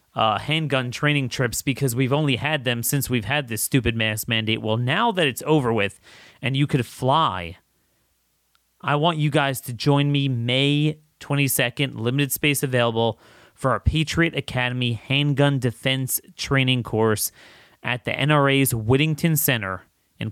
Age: 30-49